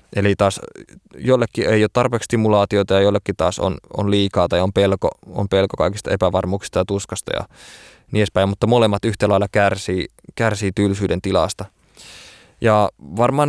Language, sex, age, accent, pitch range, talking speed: Finnish, male, 20-39, native, 100-110 Hz, 150 wpm